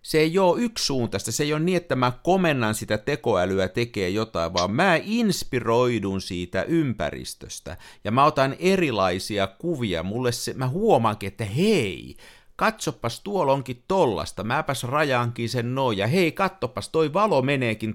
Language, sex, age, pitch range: Finnish, male, 60-79, 100-155 Hz